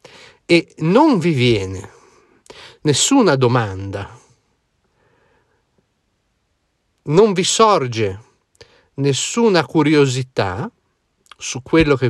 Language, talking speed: Italian, 70 wpm